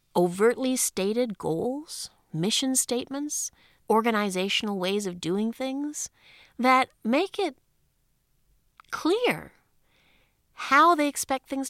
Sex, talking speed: female, 90 wpm